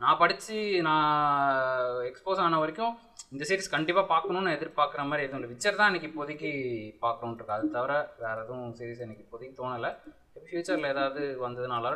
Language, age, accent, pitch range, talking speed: Tamil, 20-39, native, 135-185 Hz, 145 wpm